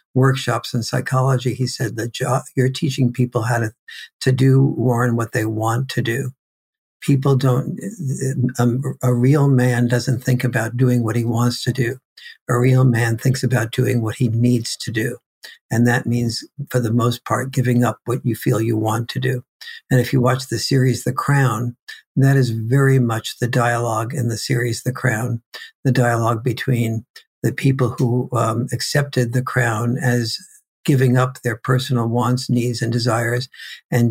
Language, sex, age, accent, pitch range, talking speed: English, male, 60-79, American, 120-130 Hz, 180 wpm